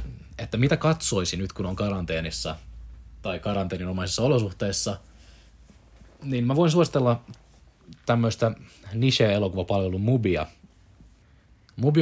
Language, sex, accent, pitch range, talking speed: Finnish, male, native, 85-115 Hz, 95 wpm